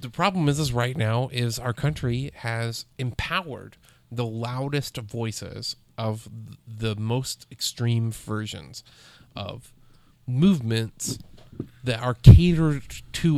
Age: 30-49